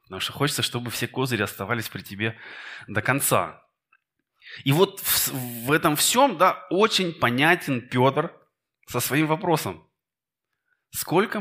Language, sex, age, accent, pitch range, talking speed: Russian, male, 20-39, native, 125-170 Hz, 125 wpm